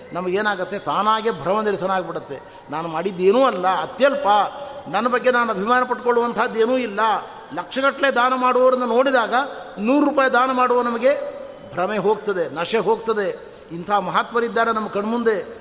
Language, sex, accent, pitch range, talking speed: Kannada, male, native, 185-255 Hz, 125 wpm